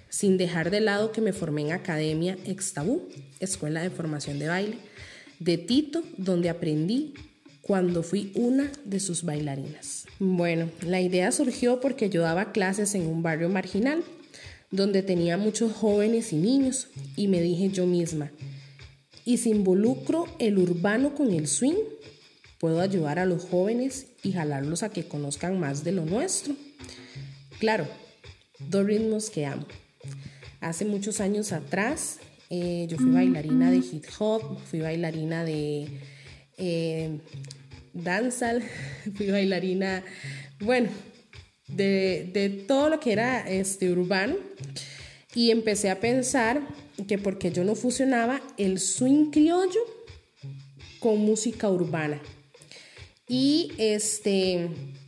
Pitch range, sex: 160-225 Hz, female